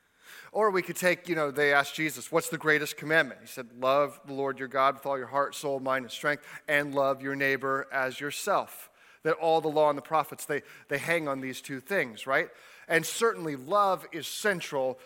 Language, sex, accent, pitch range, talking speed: English, male, American, 140-180 Hz, 215 wpm